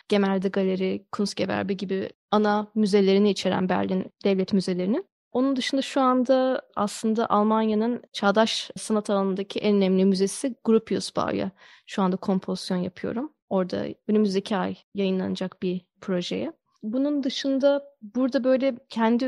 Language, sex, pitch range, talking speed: Turkish, female, 195-235 Hz, 120 wpm